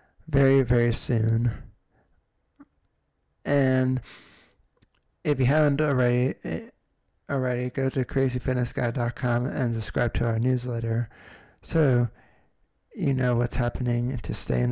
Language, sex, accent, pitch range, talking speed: English, male, American, 115-135 Hz, 100 wpm